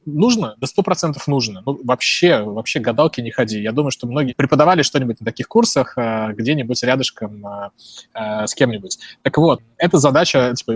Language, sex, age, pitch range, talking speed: Russian, male, 20-39, 115-150 Hz, 155 wpm